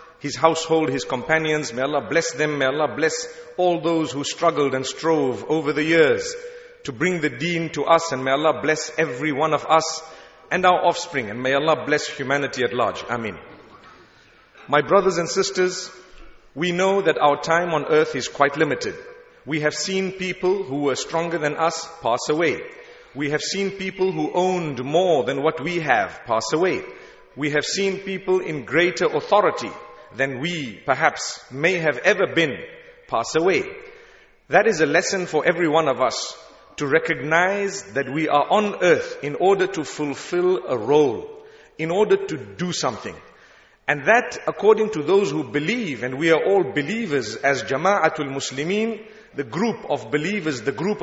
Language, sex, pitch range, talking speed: English, male, 150-195 Hz, 175 wpm